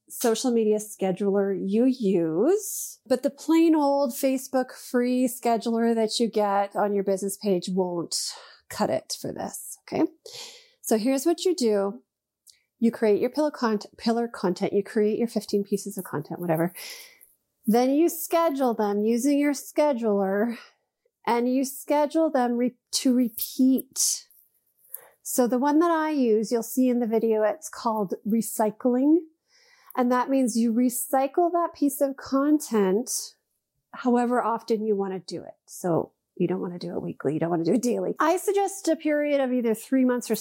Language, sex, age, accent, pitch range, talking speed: English, female, 30-49, American, 215-295 Hz, 160 wpm